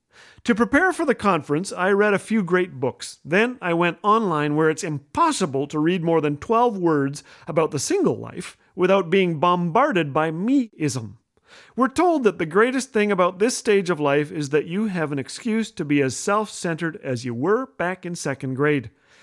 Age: 40-59